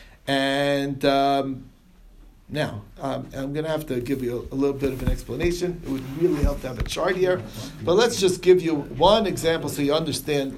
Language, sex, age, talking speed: English, male, 50-69, 210 wpm